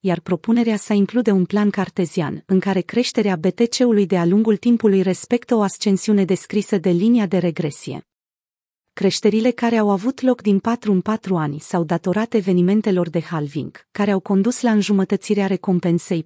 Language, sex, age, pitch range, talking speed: Romanian, female, 30-49, 180-220 Hz, 160 wpm